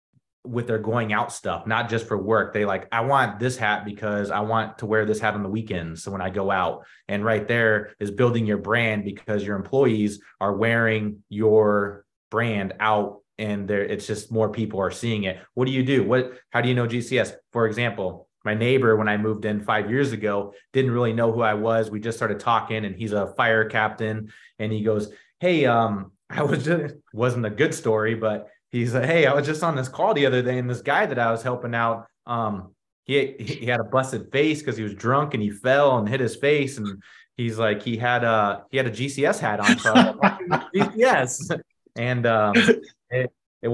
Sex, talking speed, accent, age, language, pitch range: male, 220 wpm, American, 30-49, English, 105-125 Hz